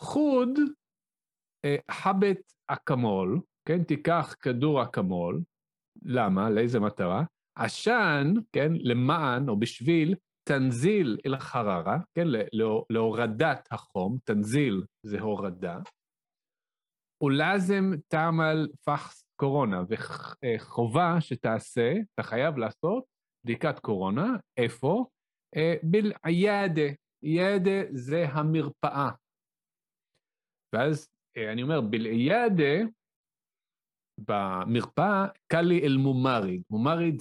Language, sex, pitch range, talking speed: Hebrew, male, 125-190 Hz, 80 wpm